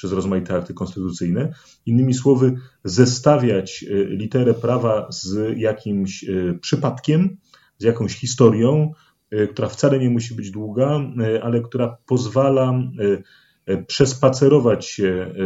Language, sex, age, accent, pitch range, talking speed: Polish, male, 40-59, native, 95-130 Hz, 100 wpm